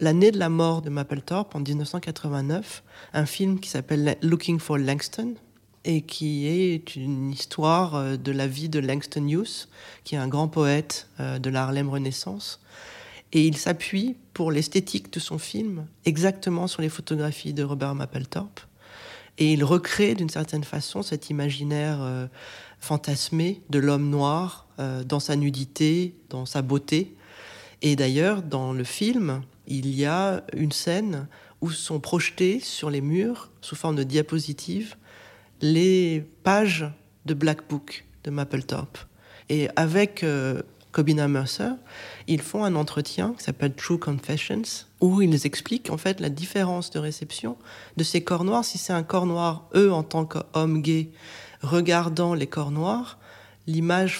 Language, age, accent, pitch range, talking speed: French, 30-49, French, 145-180 Hz, 150 wpm